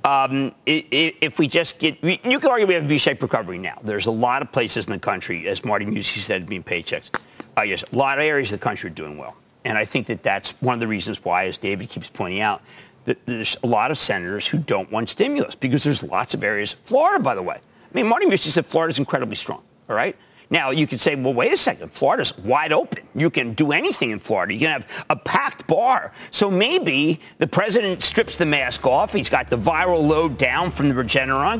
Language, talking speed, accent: English, 235 wpm, American